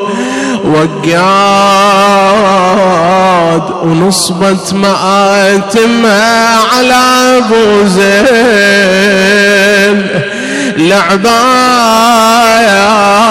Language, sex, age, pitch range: Arabic, male, 30-49, 200-255 Hz